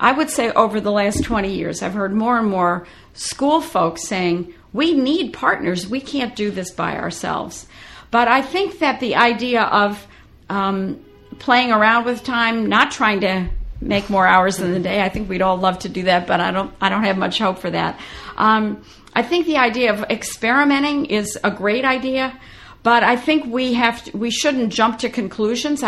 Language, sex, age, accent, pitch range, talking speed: English, female, 50-69, American, 195-245 Hz, 200 wpm